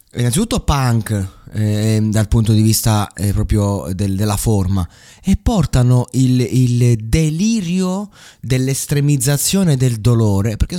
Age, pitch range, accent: 30-49, 100-120 Hz, native